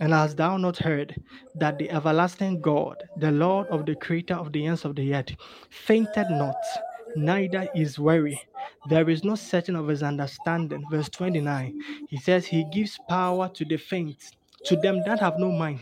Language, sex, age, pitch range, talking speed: English, male, 20-39, 160-210 Hz, 180 wpm